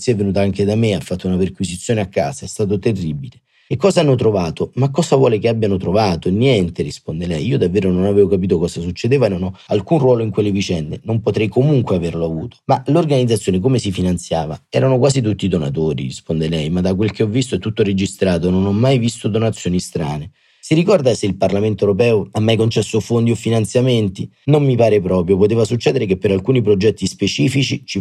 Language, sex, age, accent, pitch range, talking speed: Italian, male, 30-49, native, 90-115 Hz, 205 wpm